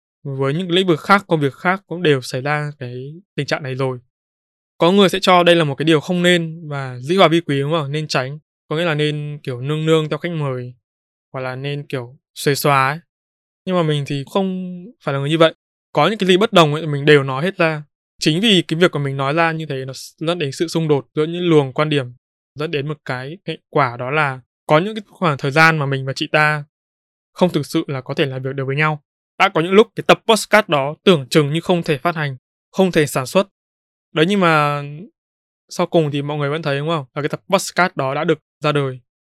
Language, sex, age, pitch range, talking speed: Vietnamese, male, 20-39, 135-170 Hz, 255 wpm